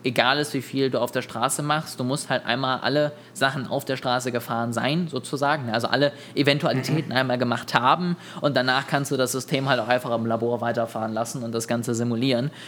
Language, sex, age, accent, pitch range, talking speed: German, male, 20-39, German, 115-140 Hz, 210 wpm